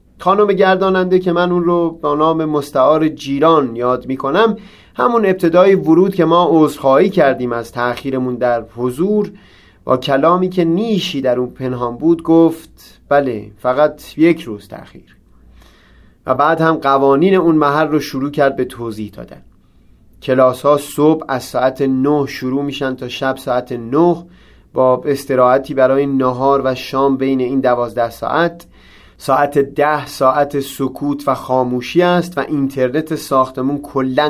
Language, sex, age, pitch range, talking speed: Persian, male, 30-49, 135-180 Hz, 145 wpm